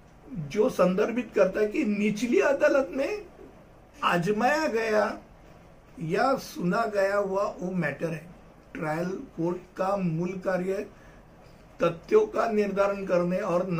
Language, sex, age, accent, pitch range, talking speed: Hindi, male, 60-79, native, 175-230 Hz, 120 wpm